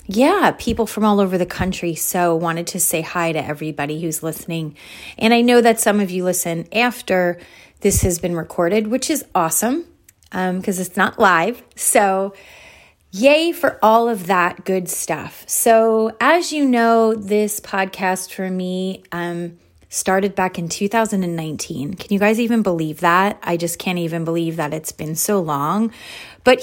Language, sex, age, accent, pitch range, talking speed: English, female, 30-49, American, 175-225 Hz, 170 wpm